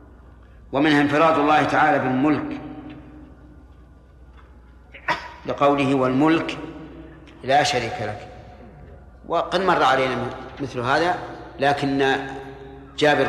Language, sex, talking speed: Arabic, male, 75 wpm